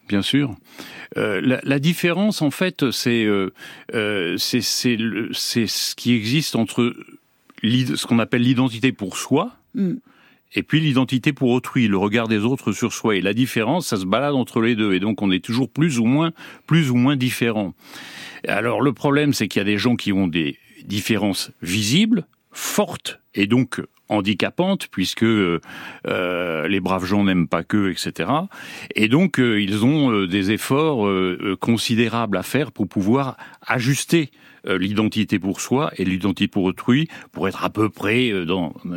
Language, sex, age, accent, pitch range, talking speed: French, male, 40-59, French, 100-140 Hz, 175 wpm